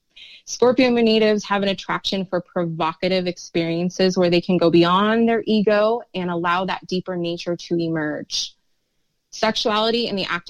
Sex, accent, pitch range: female, American, 170-205 Hz